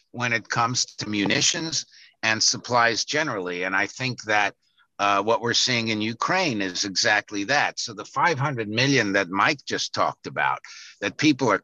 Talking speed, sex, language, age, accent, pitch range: 170 wpm, male, English, 60-79, American, 105-130 Hz